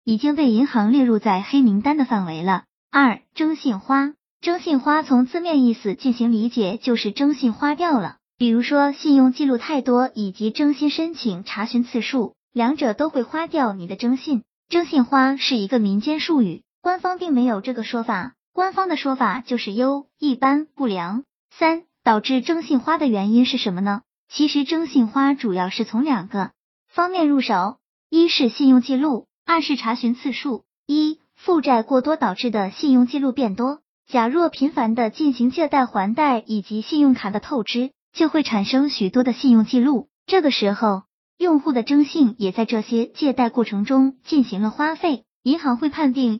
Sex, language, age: male, Chinese, 20-39